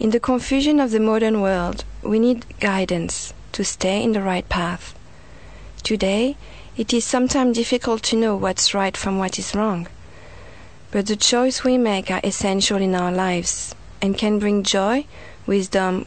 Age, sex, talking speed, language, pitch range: 40-59, female, 165 wpm, English, 180-220 Hz